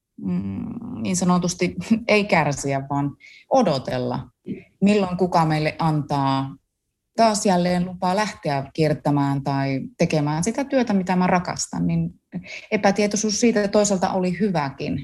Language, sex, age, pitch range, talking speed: Finnish, female, 30-49, 145-200 Hz, 115 wpm